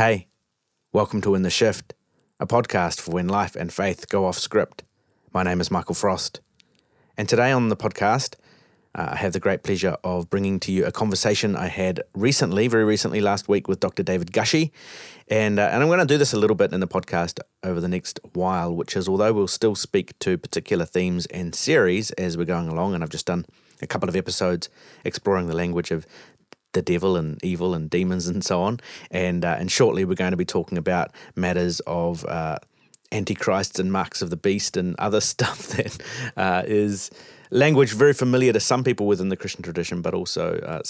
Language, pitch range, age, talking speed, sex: English, 90-105 Hz, 30-49, 205 wpm, male